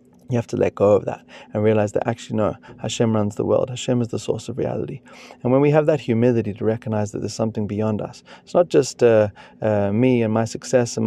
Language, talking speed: English, 245 wpm